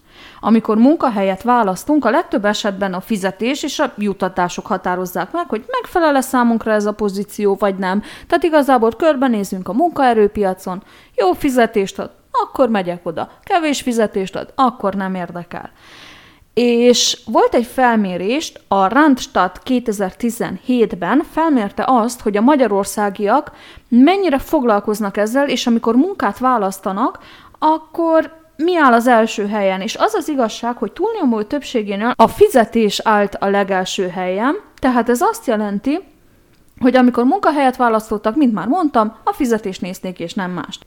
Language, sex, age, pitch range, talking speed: Hungarian, female, 20-39, 200-265 Hz, 135 wpm